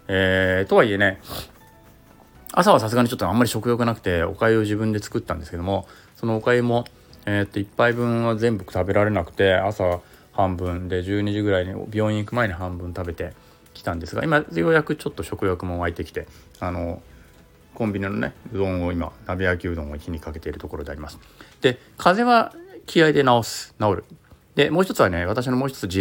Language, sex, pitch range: Japanese, male, 85-115 Hz